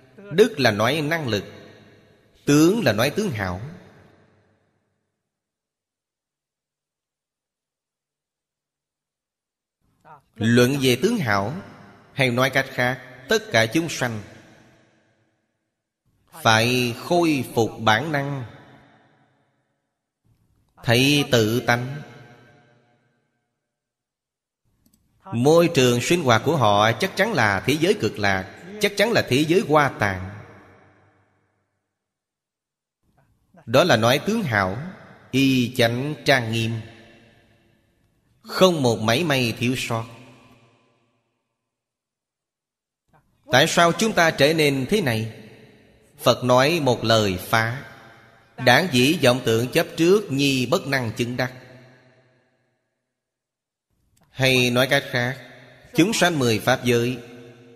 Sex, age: male, 30-49